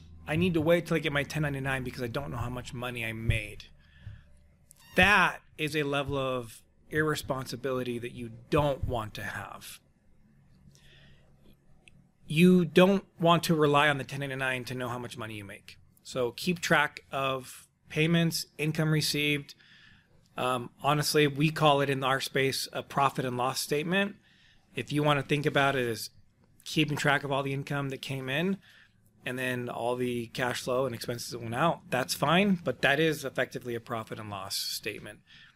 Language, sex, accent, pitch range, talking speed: English, male, American, 120-145 Hz, 175 wpm